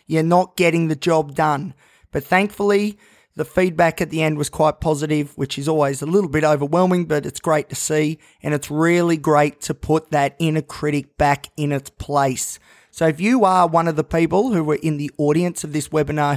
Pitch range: 145-170 Hz